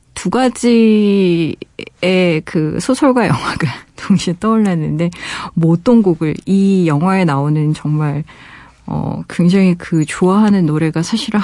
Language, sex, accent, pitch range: Korean, female, native, 165-215 Hz